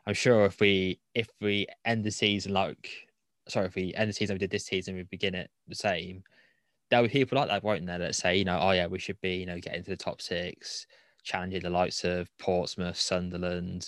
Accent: British